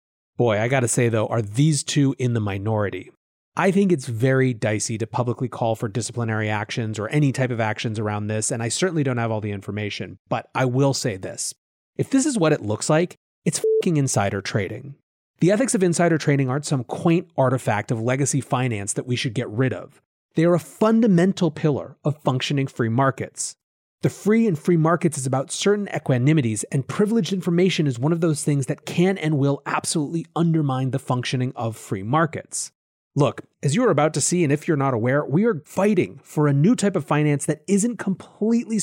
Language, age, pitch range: English, 30-49, 120-175 Hz